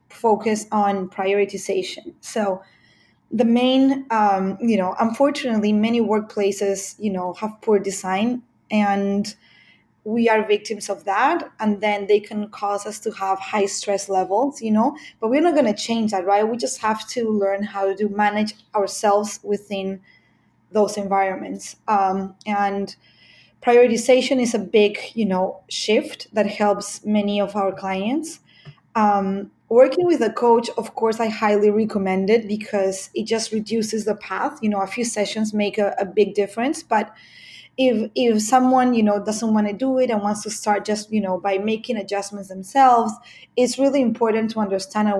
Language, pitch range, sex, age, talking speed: English, 200-230 Hz, female, 20-39, 165 wpm